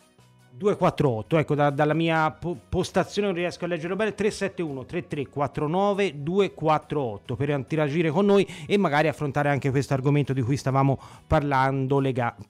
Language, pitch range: Italian, 135-170 Hz